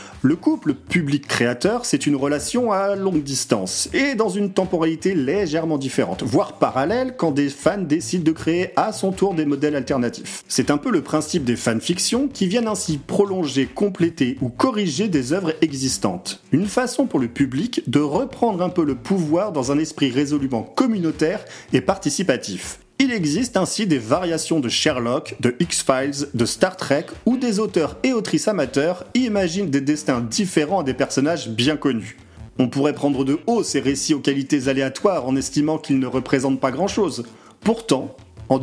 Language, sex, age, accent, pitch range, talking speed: French, male, 40-59, French, 140-210 Hz, 170 wpm